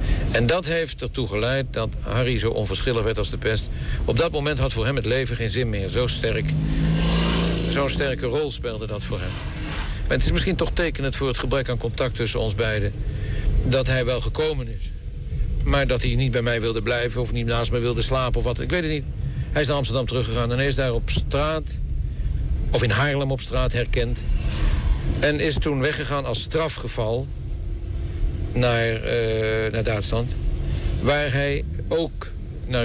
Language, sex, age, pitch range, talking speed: Dutch, male, 60-79, 105-130 Hz, 185 wpm